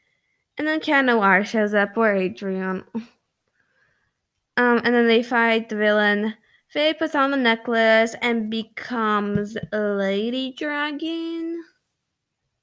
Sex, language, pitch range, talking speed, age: female, English, 225-310 Hz, 115 wpm, 10-29